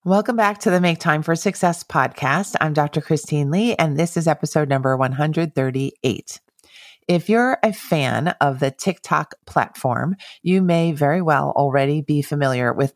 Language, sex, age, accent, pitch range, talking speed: English, female, 40-59, American, 140-170 Hz, 160 wpm